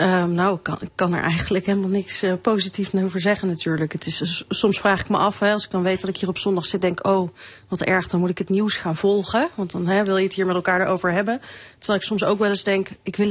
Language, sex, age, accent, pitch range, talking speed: Dutch, female, 30-49, Dutch, 180-200 Hz, 295 wpm